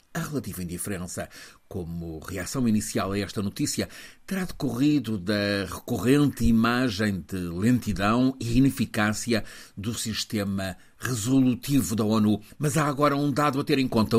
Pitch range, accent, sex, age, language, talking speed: 105-130 Hz, Portuguese, male, 50-69, Portuguese, 135 wpm